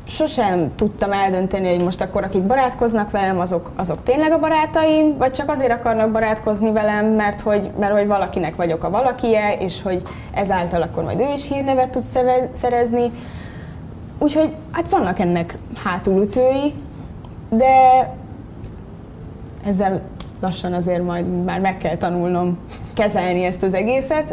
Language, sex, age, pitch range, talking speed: Hungarian, female, 20-39, 180-240 Hz, 135 wpm